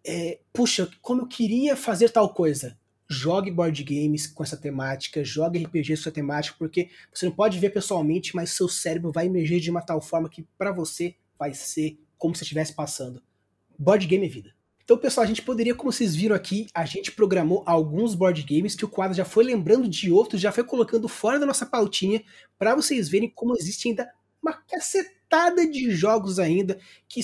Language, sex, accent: Portuguese, male, Brazilian